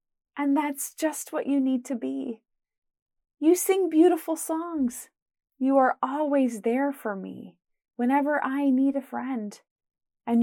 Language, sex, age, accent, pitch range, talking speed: English, female, 30-49, American, 235-295 Hz, 140 wpm